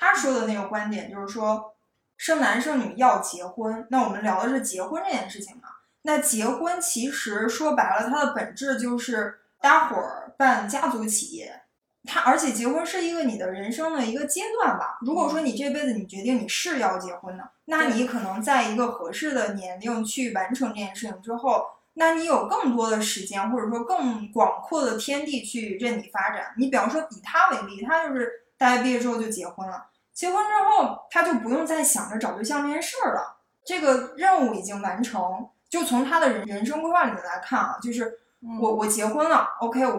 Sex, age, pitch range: female, 20-39, 215-275 Hz